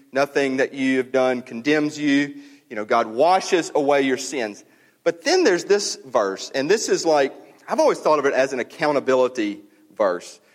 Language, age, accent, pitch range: English, 40-59, American, 140-215 Hz